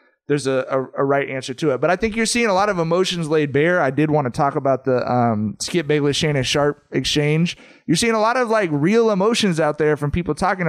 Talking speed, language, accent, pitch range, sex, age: 245 wpm, English, American, 135-180 Hz, male, 20-39